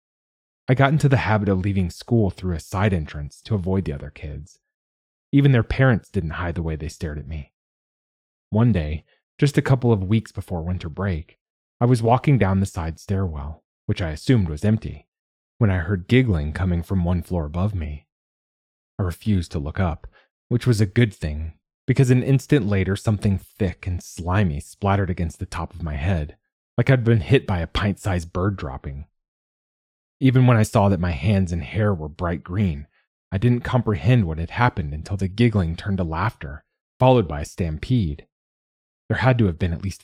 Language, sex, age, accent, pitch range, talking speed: English, male, 30-49, American, 80-110 Hz, 195 wpm